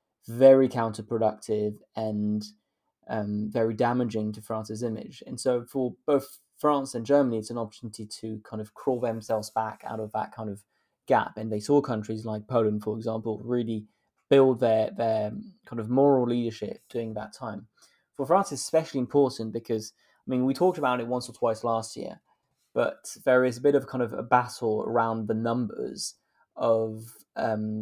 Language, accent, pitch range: English, British, 110-125 Hz